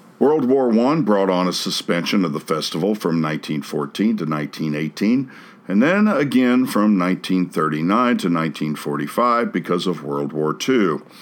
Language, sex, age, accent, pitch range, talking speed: English, male, 60-79, American, 90-145 Hz, 140 wpm